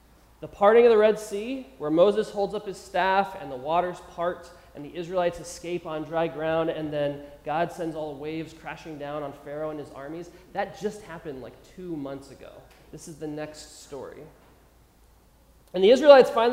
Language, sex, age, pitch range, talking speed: English, male, 20-39, 145-200 Hz, 190 wpm